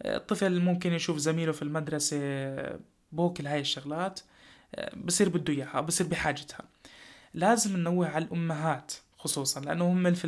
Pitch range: 160-190 Hz